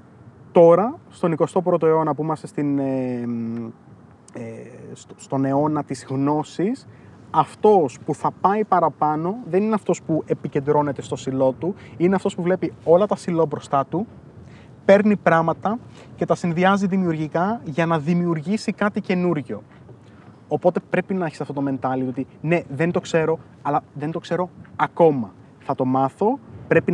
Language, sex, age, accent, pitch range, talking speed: Greek, male, 20-39, native, 135-180 Hz, 145 wpm